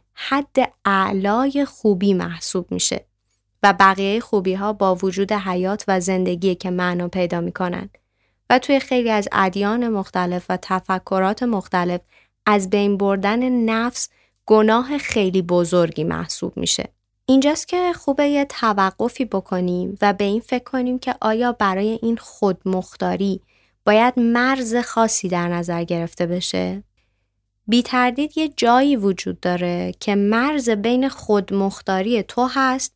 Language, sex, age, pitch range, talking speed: Persian, female, 20-39, 180-230 Hz, 130 wpm